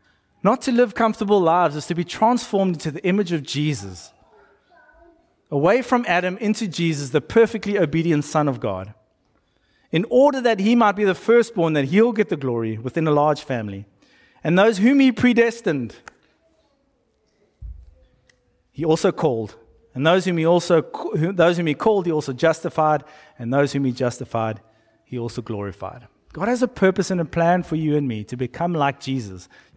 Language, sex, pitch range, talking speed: English, male, 120-195 Hz, 165 wpm